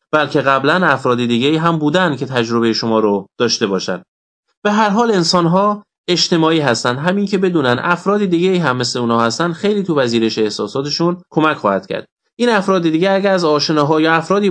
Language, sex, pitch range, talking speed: Persian, male, 125-185 Hz, 180 wpm